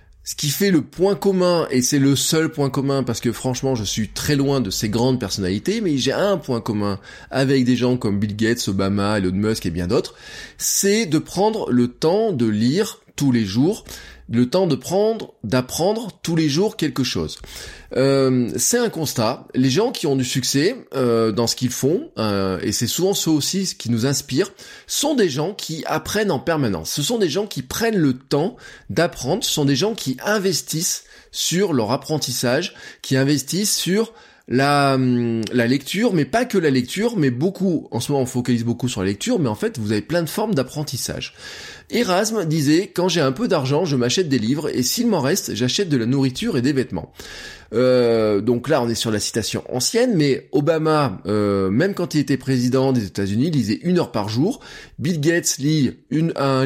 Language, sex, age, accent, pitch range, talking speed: French, male, 20-39, French, 120-160 Hz, 205 wpm